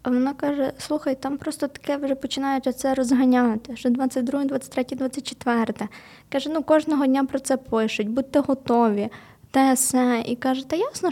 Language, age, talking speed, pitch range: Ukrainian, 20-39, 160 wpm, 225-260 Hz